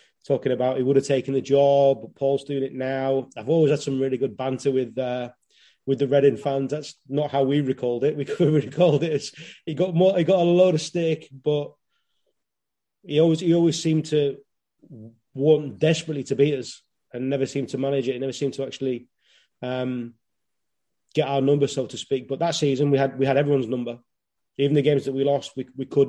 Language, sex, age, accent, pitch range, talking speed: English, male, 30-49, British, 135-155 Hz, 220 wpm